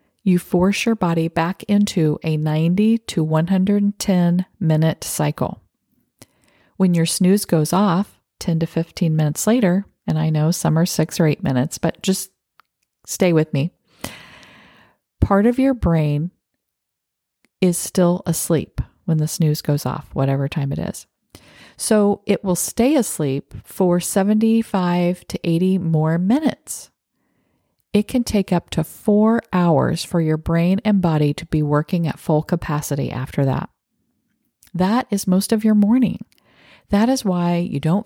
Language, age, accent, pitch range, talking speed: English, 40-59, American, 160-205 Hz, 150 wpm